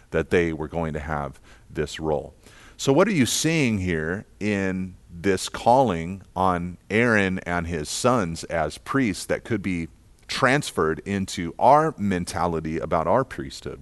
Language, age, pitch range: English, 40-59, 90-110 Hz